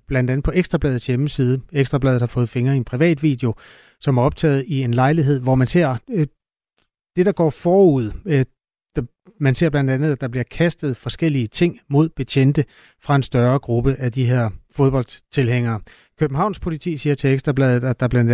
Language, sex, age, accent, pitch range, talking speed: Danish, male, 30-49, native, 125-155 Hz, 180 wpm